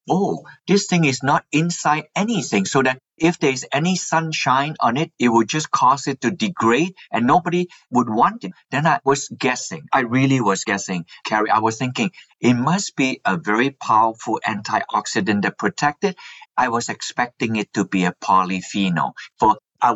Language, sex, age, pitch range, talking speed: English, male, 50-69, 120-160 Hz, 175 wpm